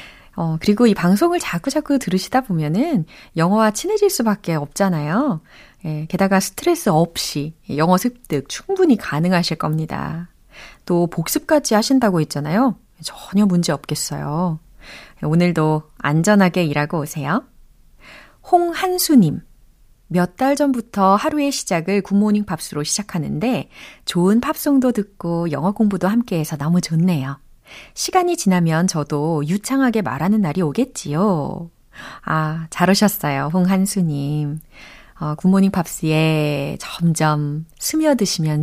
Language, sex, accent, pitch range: Korean, female, native, 155-220 Hz